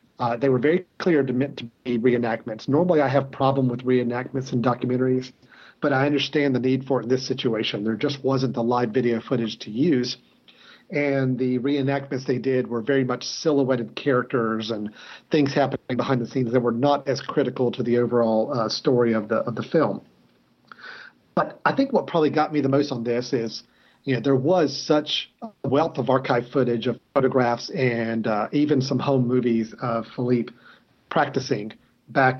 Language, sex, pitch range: English, male, 120-140 Hz